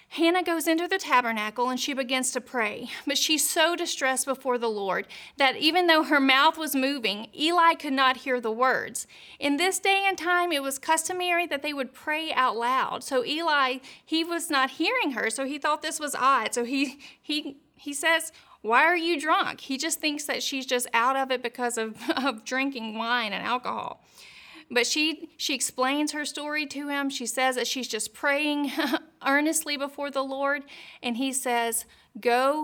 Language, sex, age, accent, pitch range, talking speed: English, female, 40-59, American, 245-310 Hz, 190 wpm